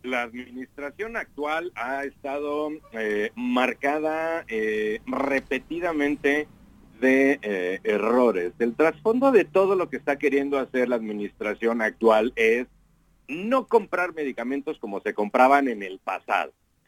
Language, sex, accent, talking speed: English, male, Mexican, 120 wpm